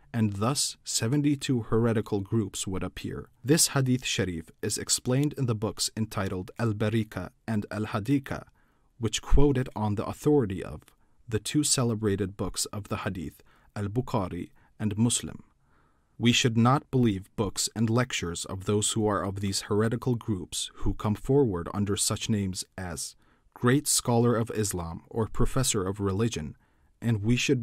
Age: 40-59